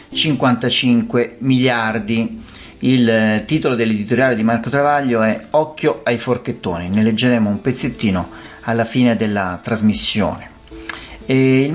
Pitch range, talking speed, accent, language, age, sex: 105-130 Hz, 105 wpm, native, Italian, 40-59, male